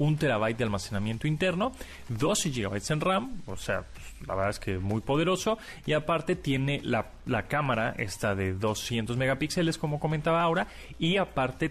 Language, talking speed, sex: Spanish, 175 wpm, male